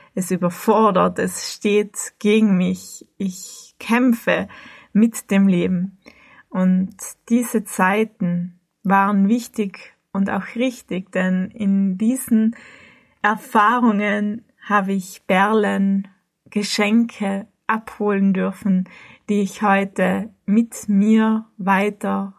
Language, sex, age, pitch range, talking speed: German, female, 20-39, 195-220 Hz, 95 wpm